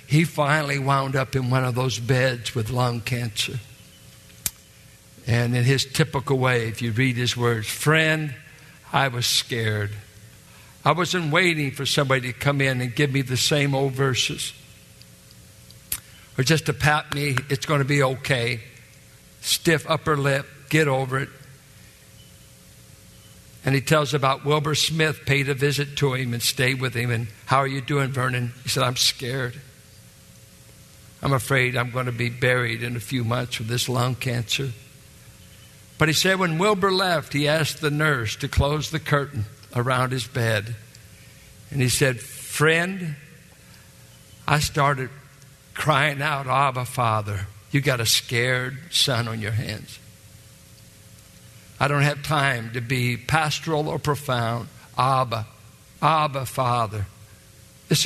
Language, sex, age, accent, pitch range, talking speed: English, male, 60-79, American, 120-145 Hz, 150 wpm